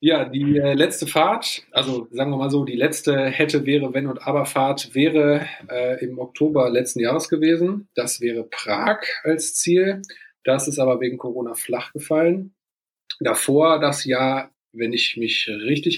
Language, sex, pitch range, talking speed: German, male, 120-150 Hz, 160 wpm